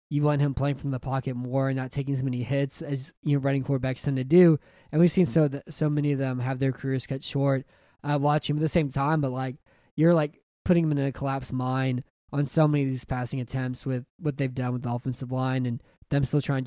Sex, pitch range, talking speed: male, 130-155 Hz, 265 wpm